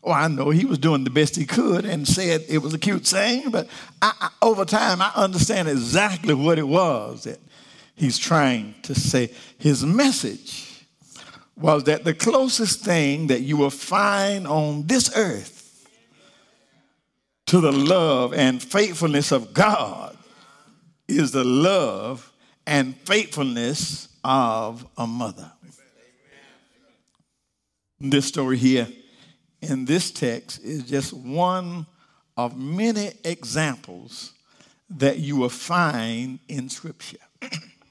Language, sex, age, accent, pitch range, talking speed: English, male, 50-69, American, 135-180 Hz, 125 wpm